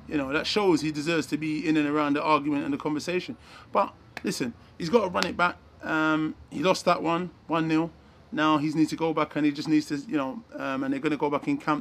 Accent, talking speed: British, 265 wpm